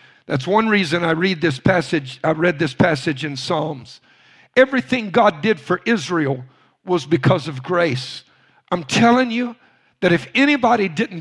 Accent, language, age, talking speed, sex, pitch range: American, English, 50-69, 155 wpm, male, 150-215 Hz